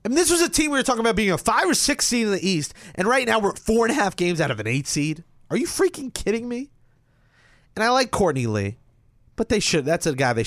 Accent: American